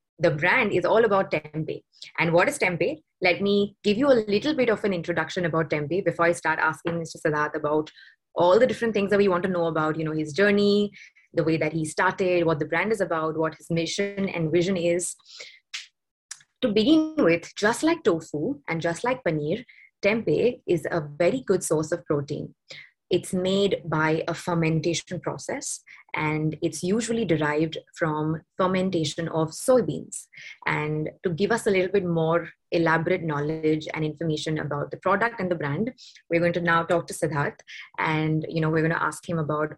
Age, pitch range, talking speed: 20-39, 155-190 Hz, 190 wpm